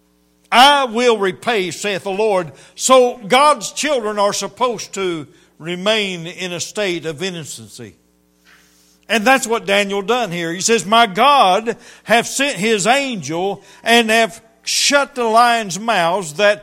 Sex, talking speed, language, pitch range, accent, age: male, 140 wpm, English, 160-225 Hz, American, 60-79